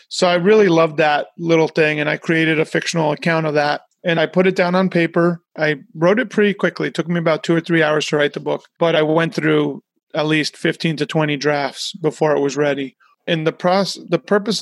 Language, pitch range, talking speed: English, 145-165 Hz, 230 wpm